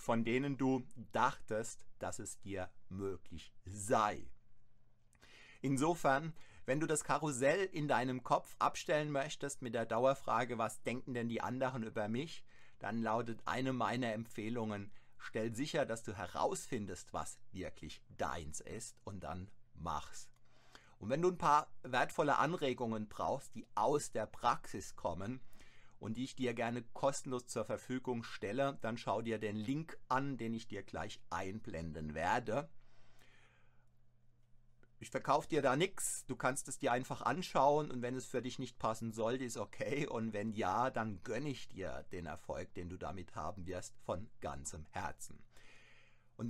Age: 50-69